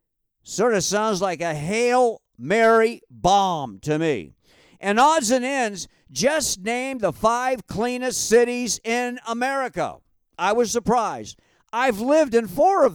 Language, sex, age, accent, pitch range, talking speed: English, male, 50-69, American, 195-250 Hz, 140 wpm